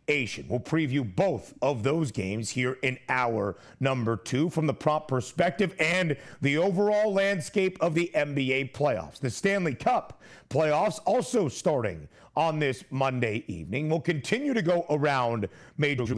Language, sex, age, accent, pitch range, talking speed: English, male, 40-59, American, 135-185 Hz, 145 wpm